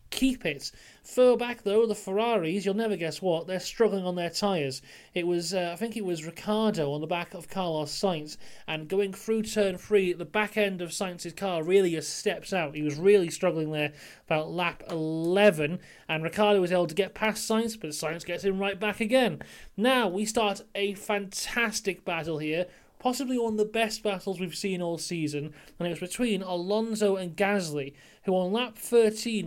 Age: 30-49